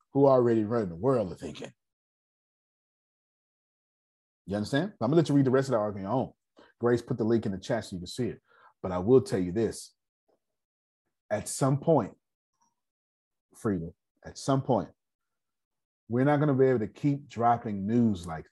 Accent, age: American, 30-49